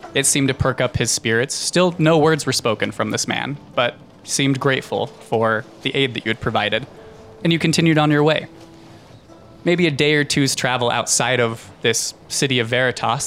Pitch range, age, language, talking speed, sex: 115-140 Hz, 20-39, English, 195 wpm, male